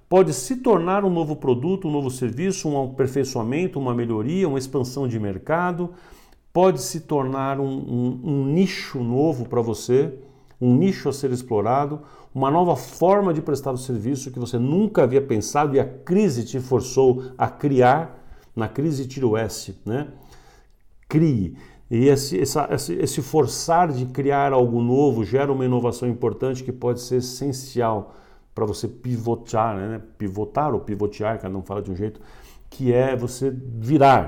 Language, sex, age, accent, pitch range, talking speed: Portuguese, male, 50-69, Brazilian, 115-140 Hz, 160 wpm